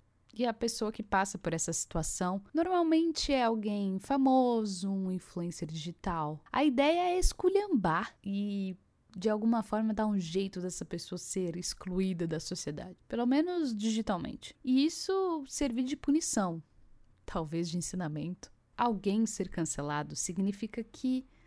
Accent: Brazilian